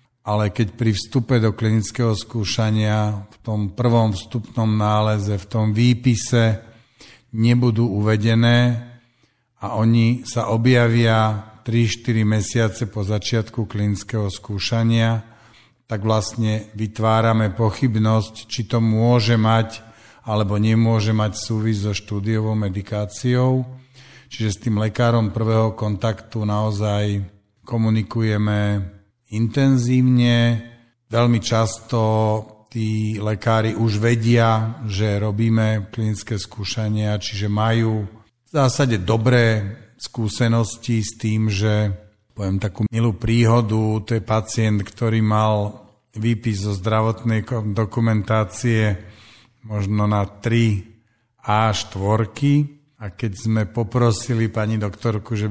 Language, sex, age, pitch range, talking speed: Slovak, male, 50-69, 105-115 Hz, 105 wpm